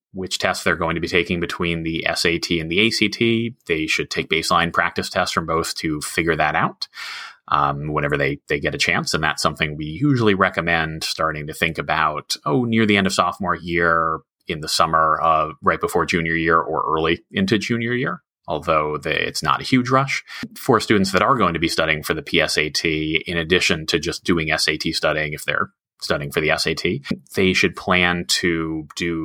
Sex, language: male, English